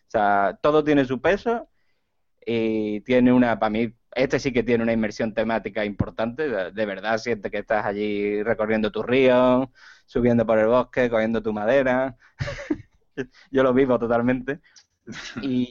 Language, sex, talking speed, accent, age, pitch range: Spanish, male, 155 wpm, Spanish, 20-39, 110-130 Hz